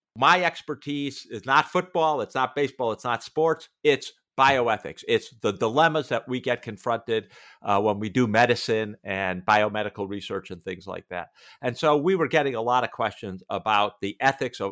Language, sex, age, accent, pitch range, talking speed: English, male, 50-69, American, 105-140 Hz, 180 wpm